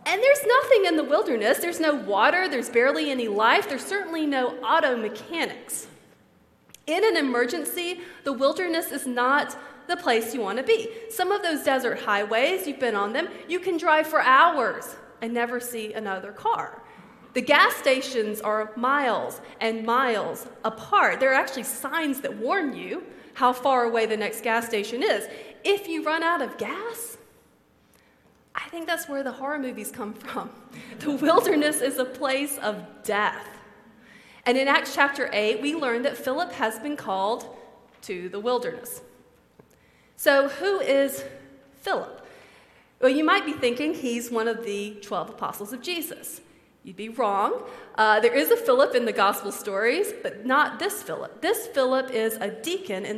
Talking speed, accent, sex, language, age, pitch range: 170 wpm, American, female, English, 30-49, 225-315 Hz